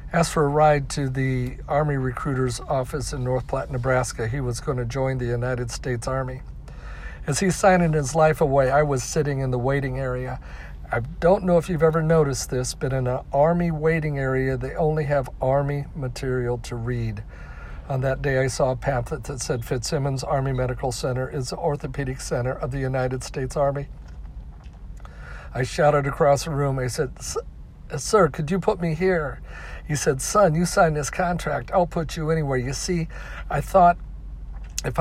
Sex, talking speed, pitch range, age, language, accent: male, 180 wpm, 125-155 Hz, 50-69, English, American